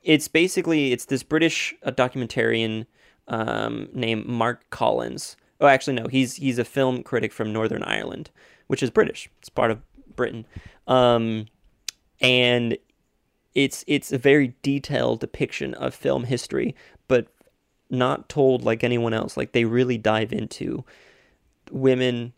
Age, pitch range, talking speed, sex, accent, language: 20-39, 115-130 Hz, 135 wpm, male, American, English